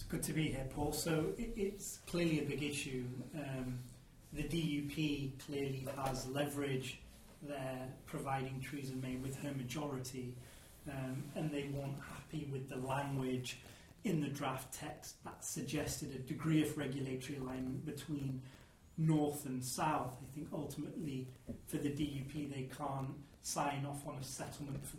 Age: 30-49